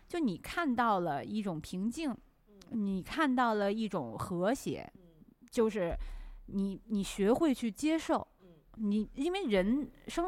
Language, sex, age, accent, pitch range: Chinese, female, 20-39, native, 180-235 Hz